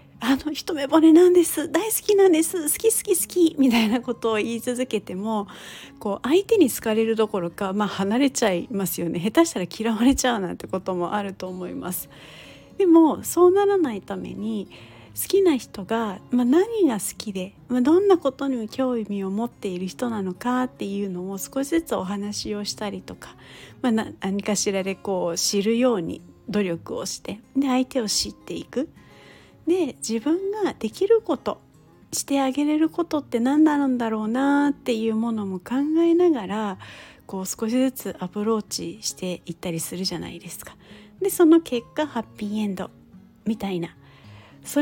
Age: 40-59